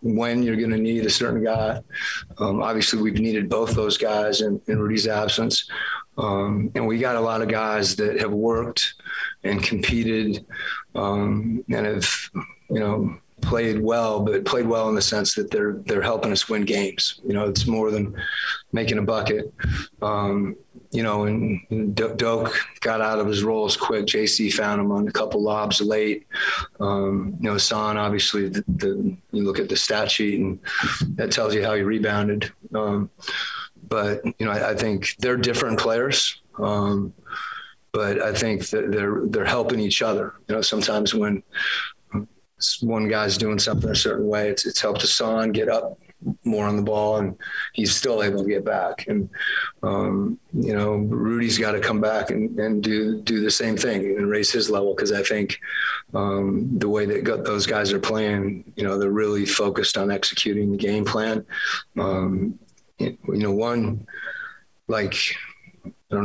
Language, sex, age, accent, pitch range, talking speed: English, male, 30-49, American, 105-110 Hz, 175 wpm